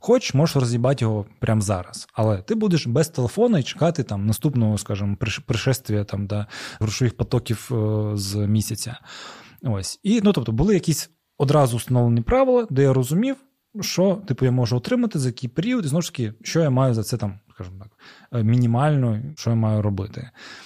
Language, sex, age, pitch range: Ukrainian, male, 20-39, 115-155 Hz